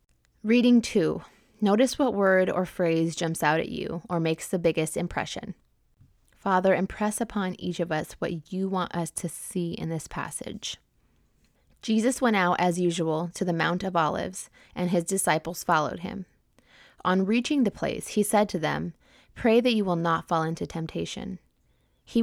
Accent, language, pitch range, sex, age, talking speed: American, English, 165-200 Hz, female, 20-39, 170 wpm